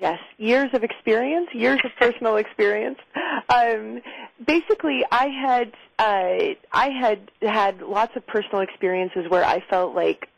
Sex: female